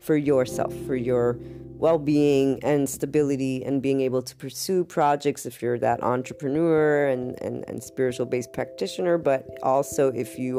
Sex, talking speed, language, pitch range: female, 155 wpm, English, 125-145 Hz